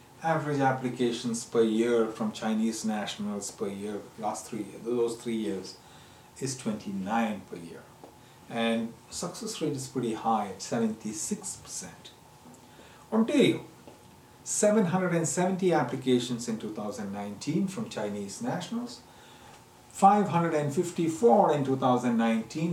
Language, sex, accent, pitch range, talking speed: English, male, Indian, 115-165 Hz, 100 wpm